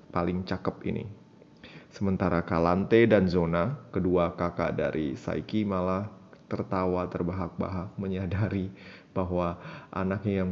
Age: 20-39